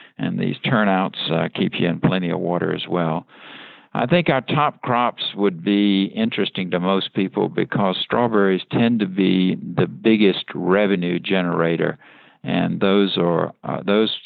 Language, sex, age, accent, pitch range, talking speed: English, male, 60-79, American, 90-110 Hz, 155 wpm